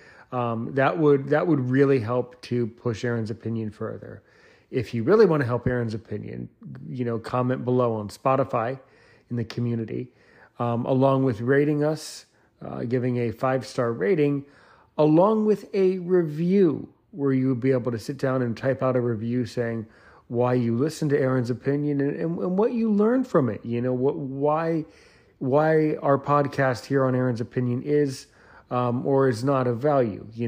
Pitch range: 120-150 Hz